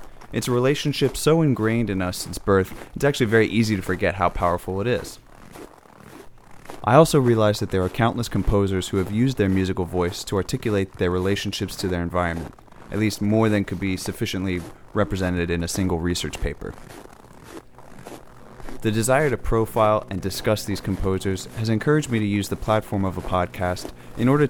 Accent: American